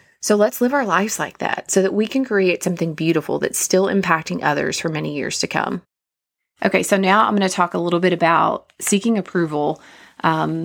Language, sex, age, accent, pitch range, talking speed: English, female, 30-49, American, 155-185 Hz, 210 wpm